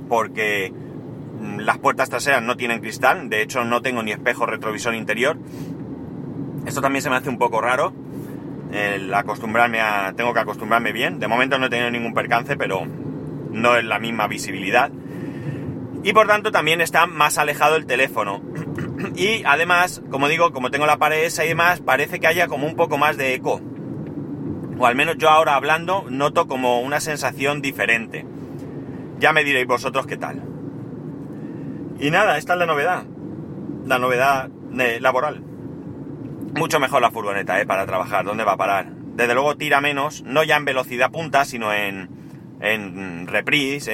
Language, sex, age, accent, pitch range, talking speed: Spanish, male, 30-49, Spanish, 115-150 Hz, 165 wpm